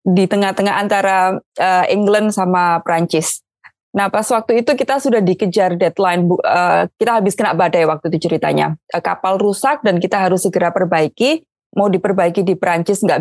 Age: 20-39